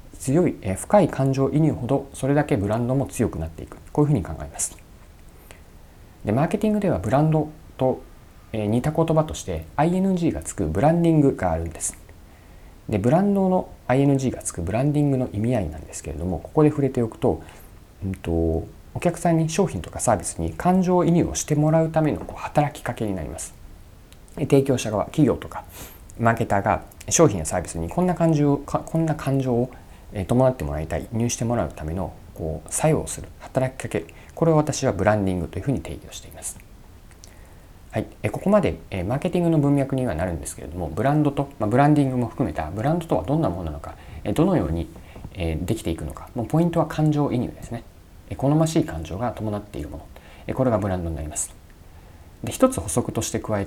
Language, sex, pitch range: Japanese, male, 85-145 Hz